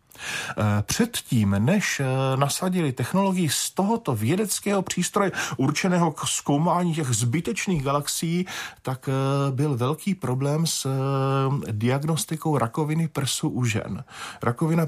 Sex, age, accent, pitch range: male, 40-59, native, 115-155 Hz